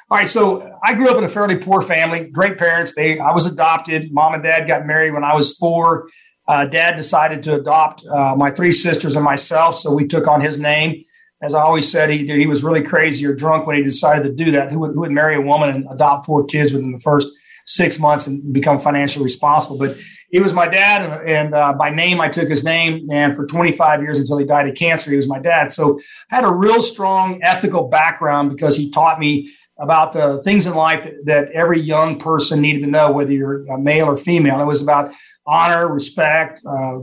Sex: male